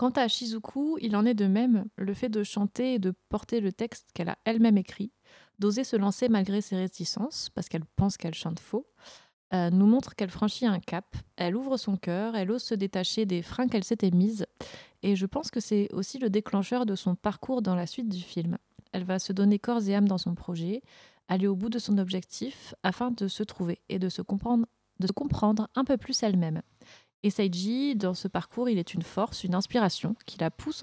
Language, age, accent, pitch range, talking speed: French, 30-49, French, 185-225 Hz, 220 wpm